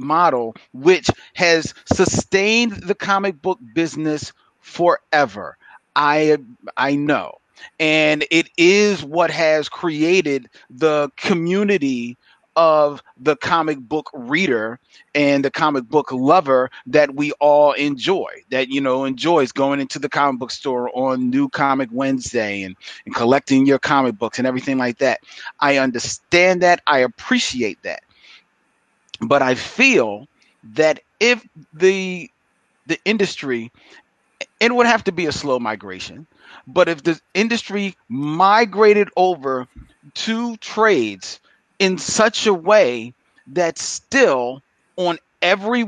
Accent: American